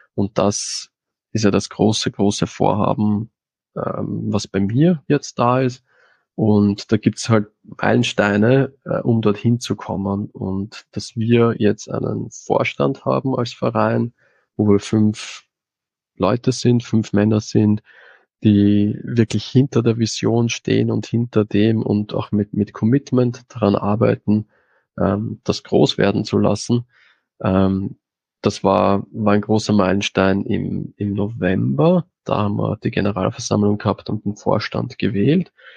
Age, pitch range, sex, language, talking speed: 20-39, 100-120 Hz, male, German, 145 wpm